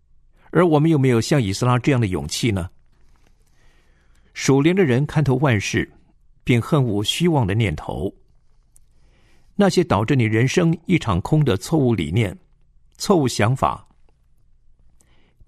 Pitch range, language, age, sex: 100-140 Hz, Chinese, 50-69, male